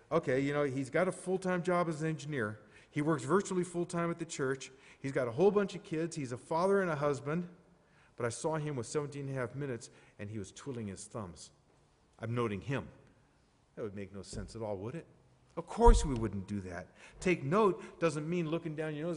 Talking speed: 230 wpm